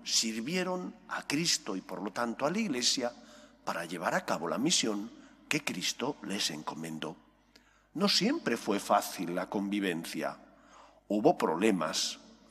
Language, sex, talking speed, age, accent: English, male, 135 wpm, 50-69, Spanish